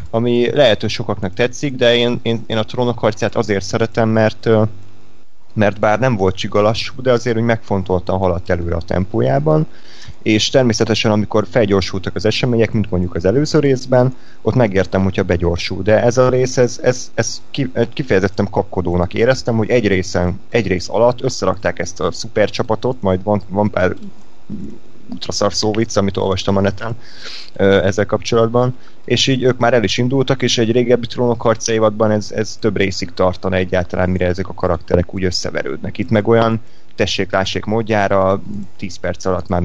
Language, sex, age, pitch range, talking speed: Hungarian, male, 30-49, 95-120 Hz, 165 wpm